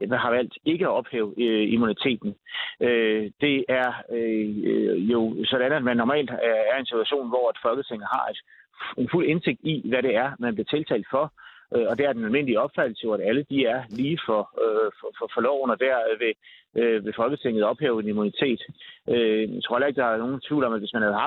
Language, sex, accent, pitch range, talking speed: Danish, male, native, 110-180 Hz, 215 wpm